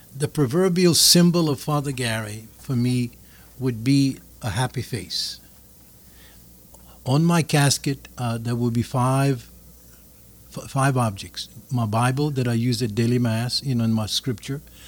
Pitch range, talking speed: 115-140 Hz, 150 wpm